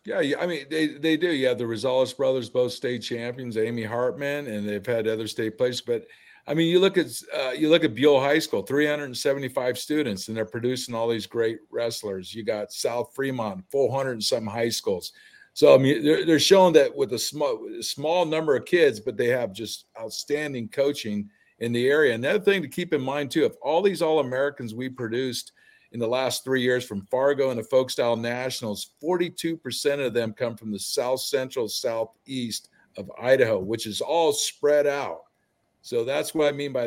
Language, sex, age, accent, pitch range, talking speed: English, male, 50-69, American, 115-155 Hz, 205 wpm